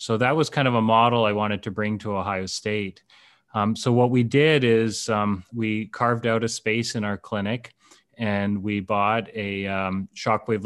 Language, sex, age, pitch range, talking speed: English, male, 30-49, 100-110 Hz, 195 wpm